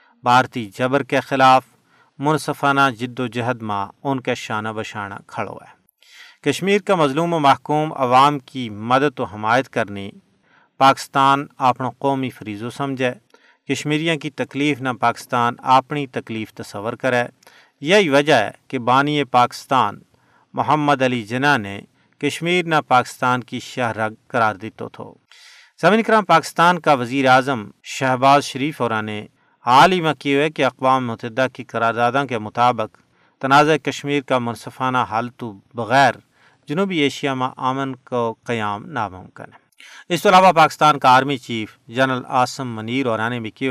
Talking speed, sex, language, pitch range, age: 150 wpm, male, Urdu, 120-145 Hz, 40-59